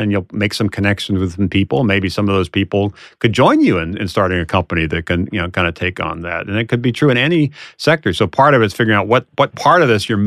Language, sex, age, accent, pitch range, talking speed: English, male, 40-59, American, 100-130 Hz, 280 wpm